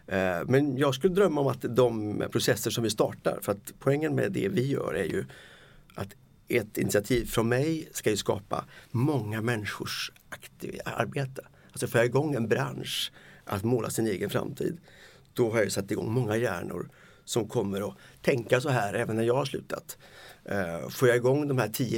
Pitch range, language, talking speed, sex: 105-130 Hz, English, 185 wpm, male